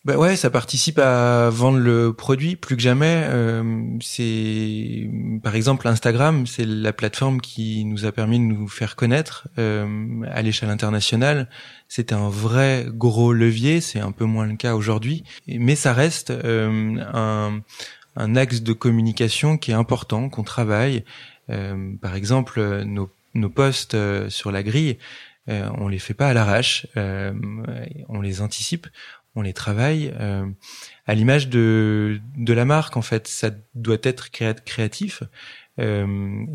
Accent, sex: French, male